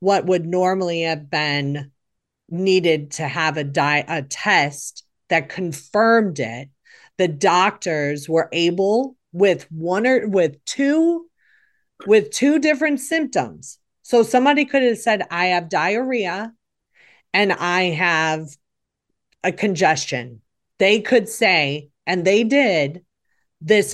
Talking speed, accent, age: 120 wpm, American, 40-59